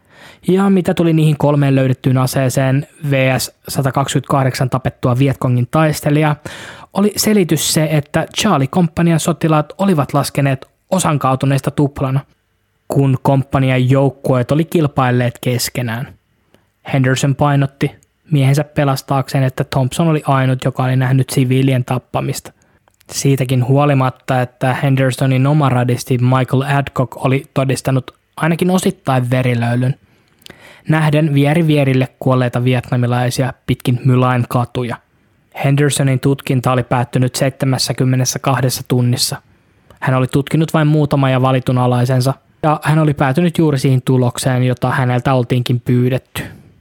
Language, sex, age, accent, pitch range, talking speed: Finnish, male, 20-39, native, 130-145 Hz, 110 wpm